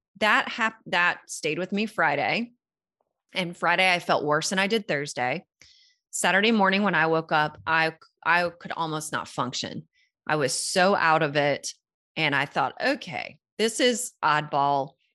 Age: 20-39